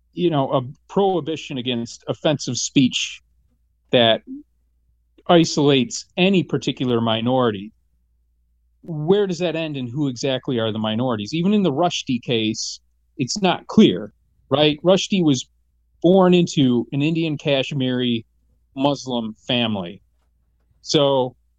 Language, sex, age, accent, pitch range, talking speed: English, male, 40-59, American, 105-155 Hz, 115 wpm